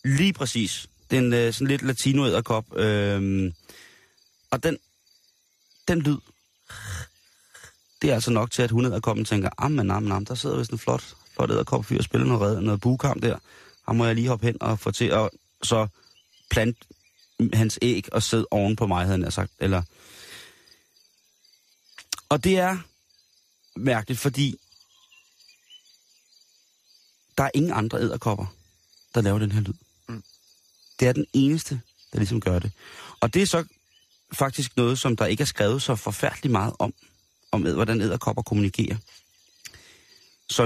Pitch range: 100-135 Hz